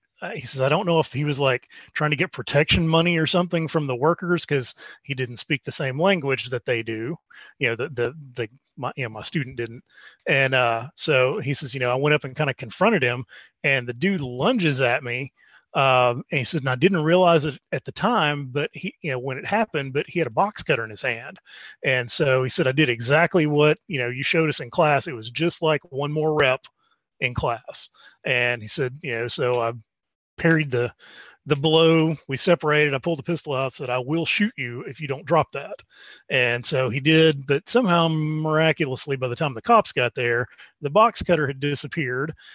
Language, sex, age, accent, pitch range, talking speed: English, male, 30-49, American, 130-160 Hz, 225 wpm